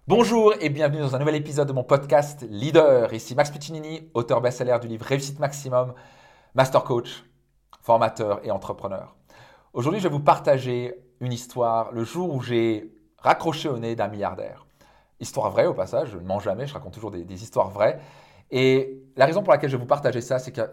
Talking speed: 205 wpm